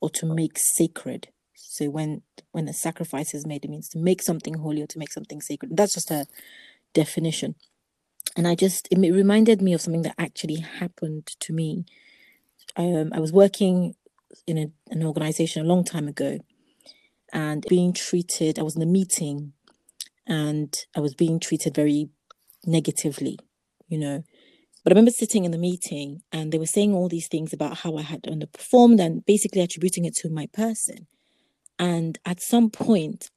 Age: 30-49